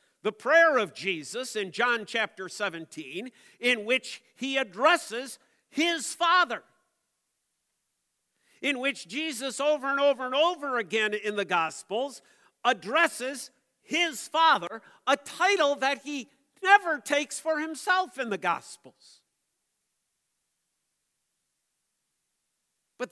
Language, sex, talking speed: English, male, 105 wpm